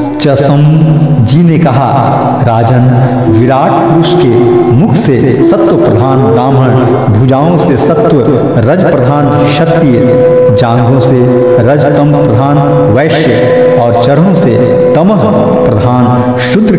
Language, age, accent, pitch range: Hindi, 60-79, native, 115-145 Hz